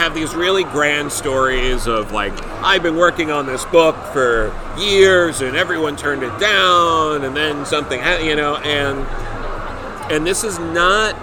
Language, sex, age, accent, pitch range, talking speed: English, male, 40-59, American, 125-160 Hz, 165 wpm